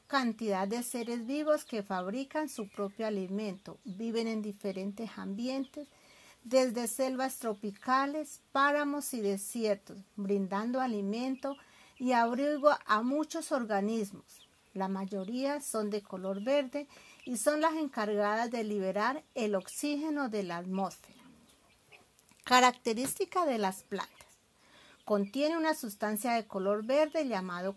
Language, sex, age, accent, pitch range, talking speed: Spanish, female, 50-69, American, 205-275 Hz, 115 wpm